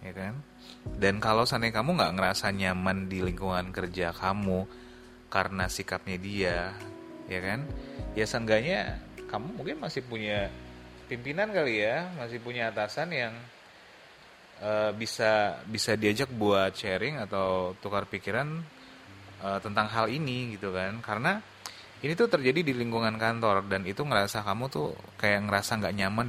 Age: 30-49